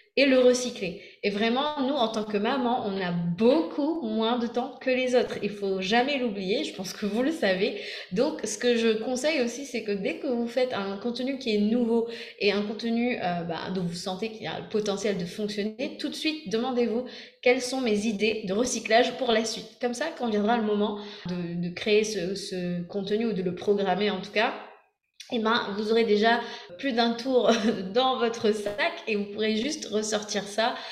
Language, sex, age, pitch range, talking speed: French, female, 20-39, 195-240 Hz, 215 wpm